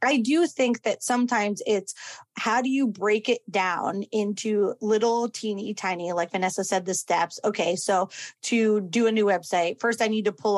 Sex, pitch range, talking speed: female, 195-245 Hz, 185 wpm